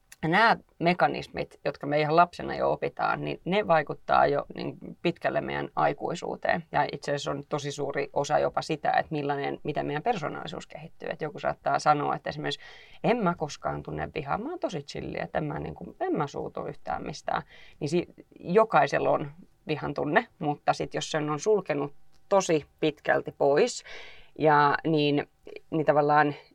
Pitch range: 145-175 Hz